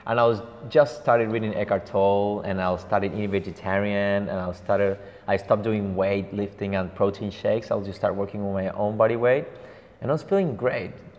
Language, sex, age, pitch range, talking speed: English, male, 20-39, 100-120 Hz, 205 wpm